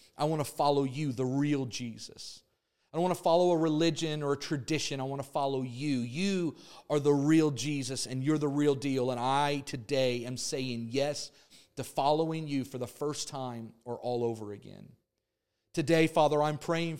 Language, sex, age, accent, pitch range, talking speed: English, male, 40-59, American, 130-155 Hz, 190 wpm